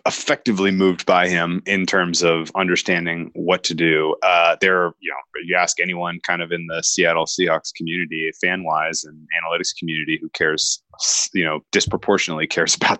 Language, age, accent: English, 20-39, American